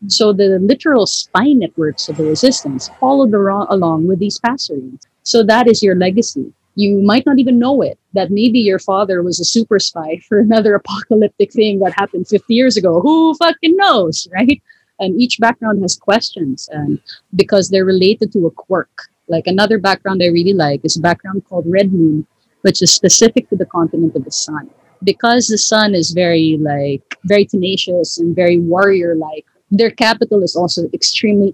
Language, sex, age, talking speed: English, female, 30-49, 180 wpm